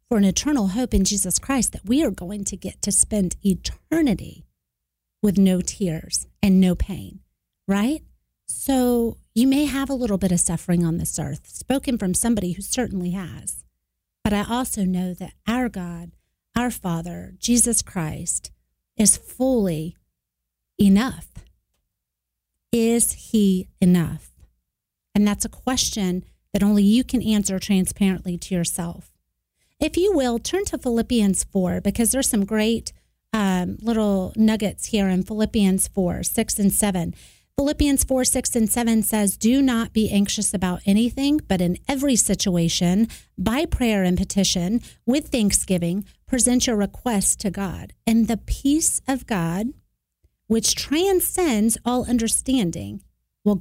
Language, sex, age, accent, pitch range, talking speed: English, female, 40-59, American, 180-235 Hz, 145 wpm